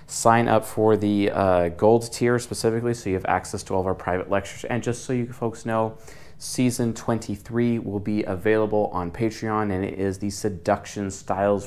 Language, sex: English, male